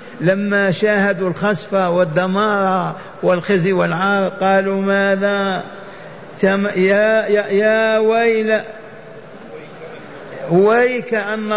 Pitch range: 180-210 Hz